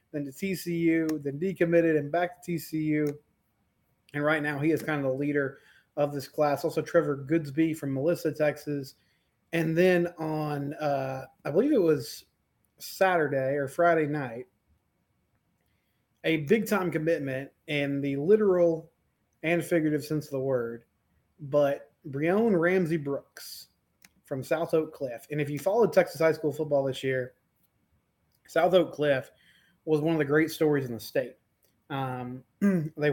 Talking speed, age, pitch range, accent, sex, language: 150 wpm, 20-39, 140-165 Hz, American, male, English